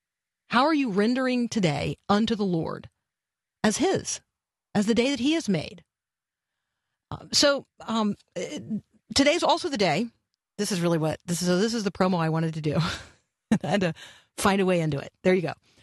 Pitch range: 180-230 Hz